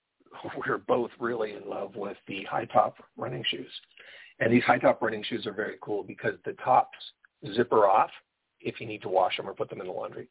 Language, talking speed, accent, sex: English, 205 wpm, American, male